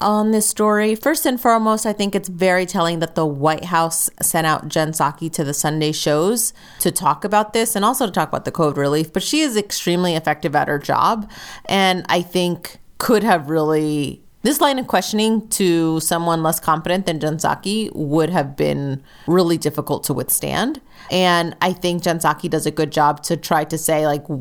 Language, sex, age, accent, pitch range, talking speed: English, female, 30-49, American, 155-200 Hz, 200 wpm